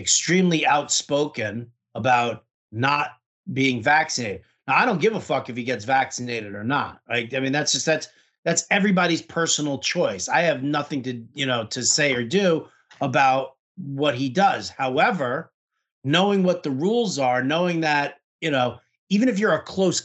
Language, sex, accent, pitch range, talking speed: English, male, American, 135-190 Hz, 170 wpm